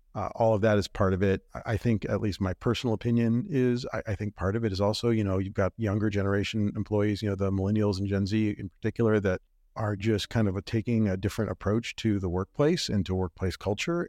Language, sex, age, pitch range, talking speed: English, male, 50-69, 95-115 Hz, 240 wpm